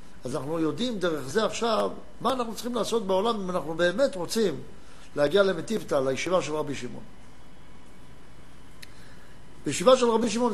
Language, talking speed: Hebrew, 140 wpm